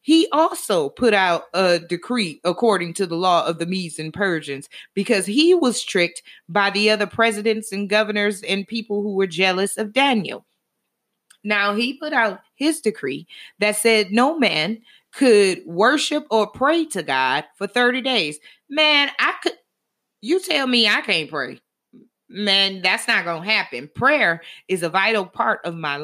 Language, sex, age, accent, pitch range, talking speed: English, female, 30-49, American, 195-255 Hz, 170 wpm